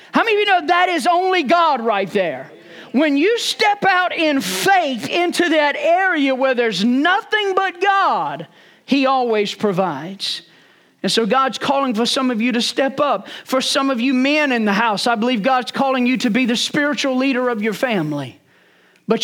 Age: 40-59